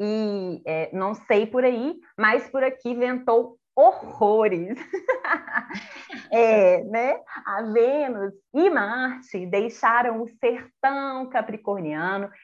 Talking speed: 90 wpm